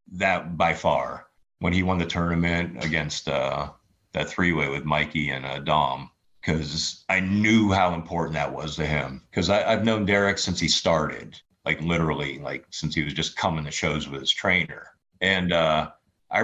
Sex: male